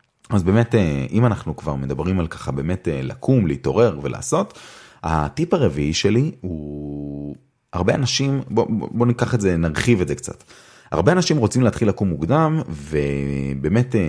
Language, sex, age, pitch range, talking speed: Hebrew, male, 30-49, 75-105 Hz, 145 wpm